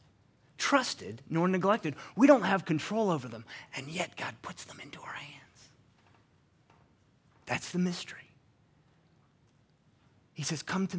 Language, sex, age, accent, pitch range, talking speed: English, male, 30-49, American, 110-150 Hz, 130 wpm